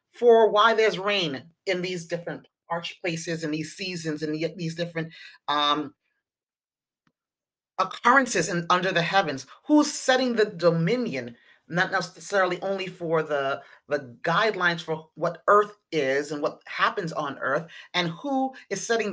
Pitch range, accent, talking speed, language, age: 170-240 Hz, American, 145 wpm, English, 30-49